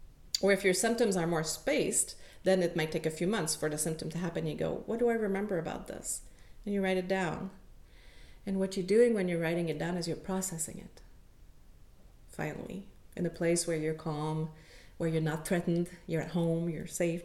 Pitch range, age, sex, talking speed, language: 165-195 Hz, 40-59, female, 210 wpm, English